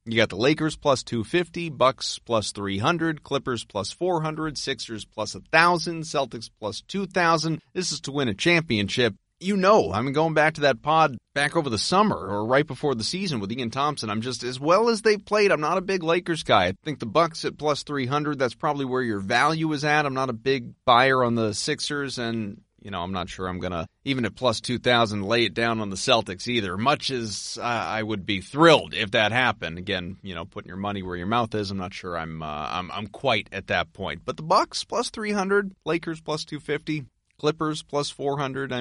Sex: male